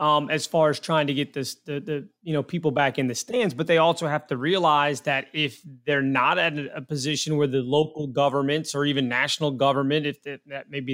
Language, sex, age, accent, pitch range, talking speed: English, male, 30-49, American, 145-185 Hz, 235 wpm